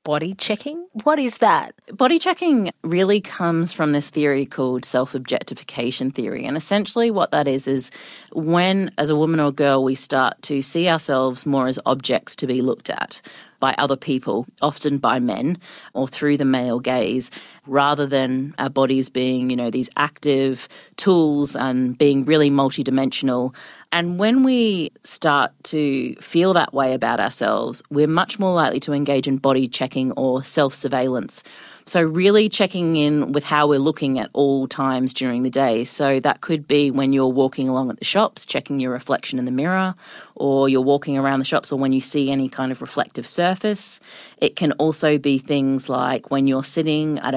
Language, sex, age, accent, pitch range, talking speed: English, female, 40-59, Australian, 135-165 Hz, 180 wpm